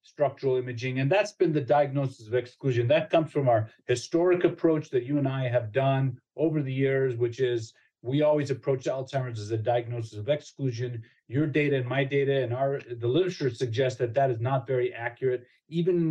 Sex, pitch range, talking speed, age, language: male, 125-145 Hz, 200 wpm, 40-59, English